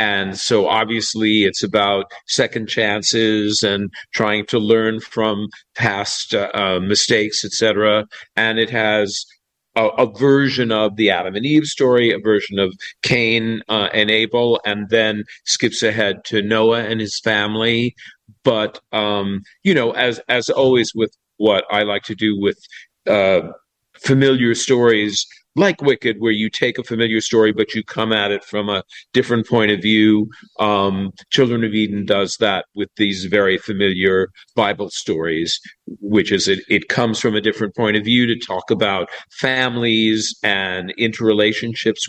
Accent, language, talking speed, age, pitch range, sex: American, English, 160 wpm, 50-69, 100-115 Hz, male